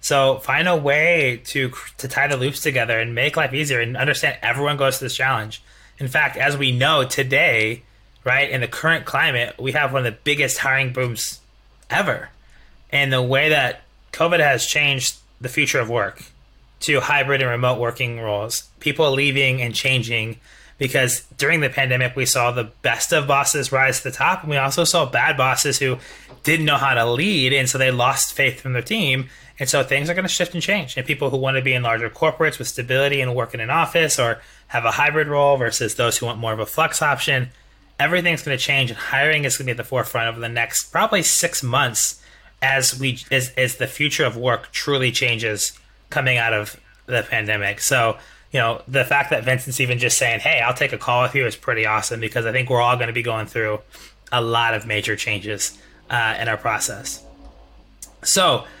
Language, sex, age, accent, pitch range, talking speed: English, male, 20-39, American, 120-140 Hz, 215 wpm